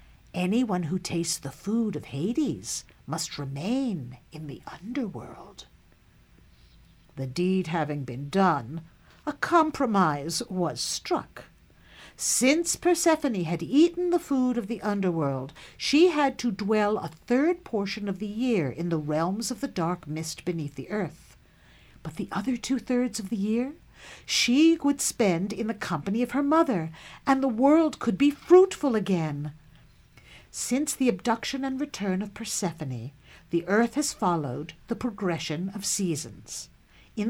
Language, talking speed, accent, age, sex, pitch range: English, 145 wpm, American, 60-79, female, 165-255 Hz